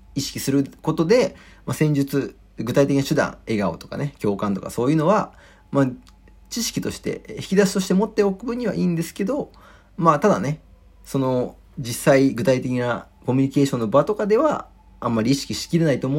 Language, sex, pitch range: Japanese, male, 110-190 Hz